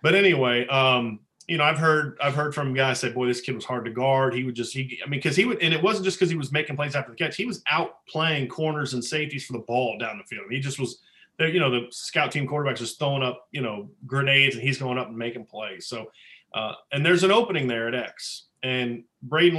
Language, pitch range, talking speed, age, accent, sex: English, 125-160 Hz, 270 wpm, 30-49, American, male